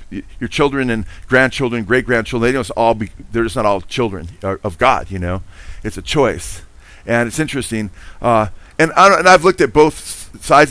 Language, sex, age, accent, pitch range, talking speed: English, male, 40-59, American, 100-135 Hz, 160 wpm